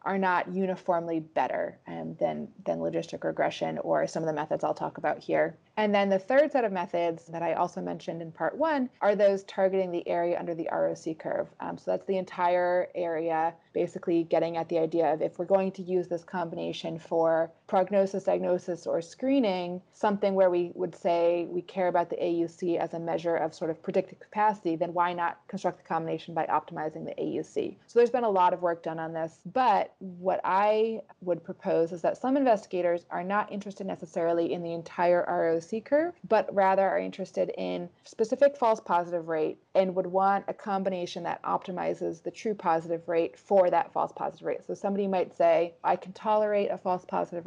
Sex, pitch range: female, 165-195 Hz